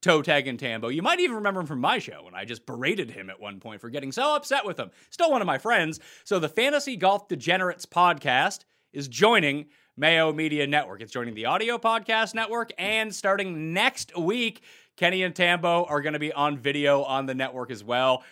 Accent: American